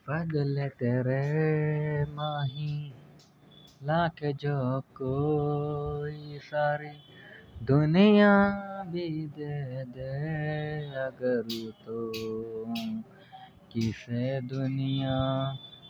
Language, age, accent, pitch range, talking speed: Hindi, 20-39, native, 130-180 Hz, 55 wpm